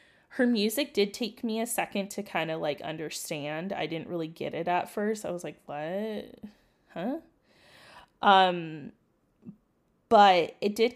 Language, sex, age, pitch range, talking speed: English, female, 20-39, 170-210 Hz, 155 wpm